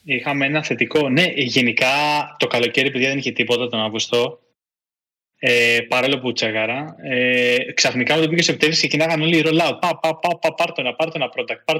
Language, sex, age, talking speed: Greek, male, 20-39, 175 wpm